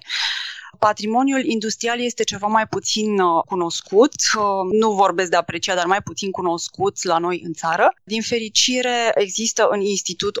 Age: 30-49